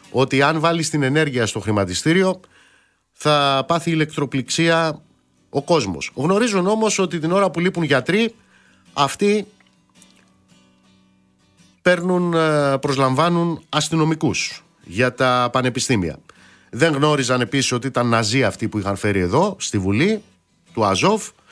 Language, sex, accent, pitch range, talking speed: Greek, male, native, 120-175 Hz, 115 wpm